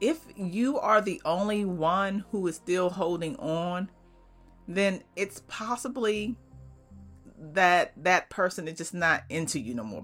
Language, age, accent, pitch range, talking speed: English, 40-59, American, 160-205 Hz, 145 wpm